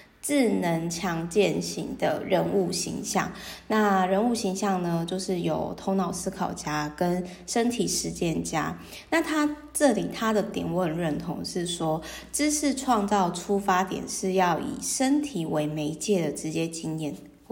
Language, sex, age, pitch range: Chinese, female, 20-39, 175-220 Hz